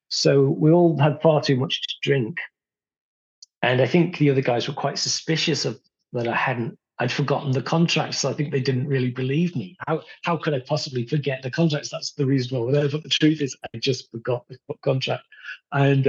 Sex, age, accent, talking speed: male, 40-59, British, 210 wpm